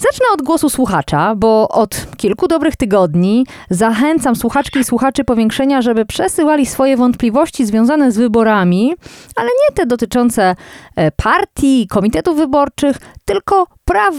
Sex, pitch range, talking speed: female, 220-315 Hz, 125 wpm